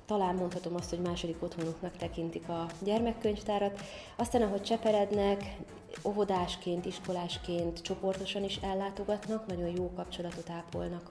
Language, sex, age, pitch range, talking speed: Hungarian, female, 20-39, 175-205 Hz, 115 wpm